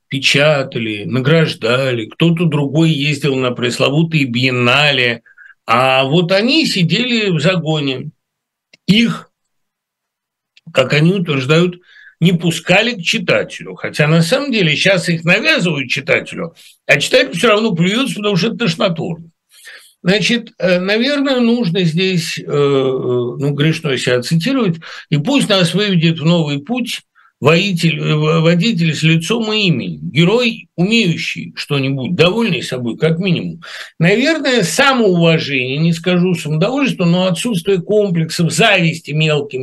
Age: 60-79